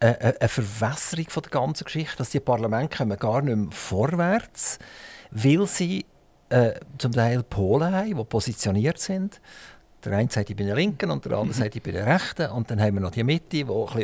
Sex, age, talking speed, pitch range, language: male, 50-69, 195 wpm, 115-150 Hz, German